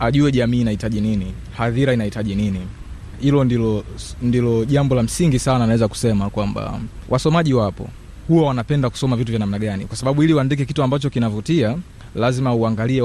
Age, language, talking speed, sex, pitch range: 30-49, Swahili, 160 wpm, male, 120-165 Hz